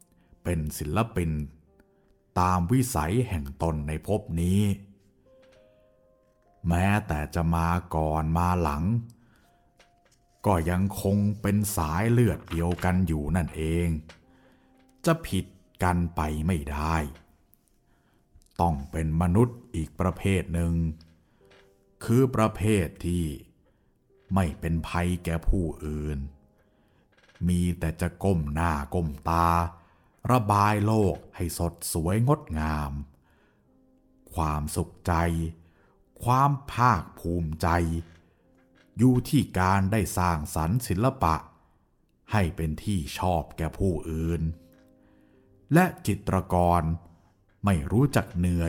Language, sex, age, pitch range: Thai, male, 60-79, 80-100 Hz